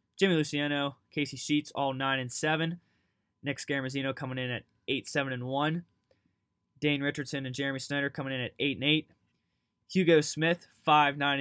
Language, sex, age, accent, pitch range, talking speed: English, male, 20-39, American, 120-140 Hz, 125 wpm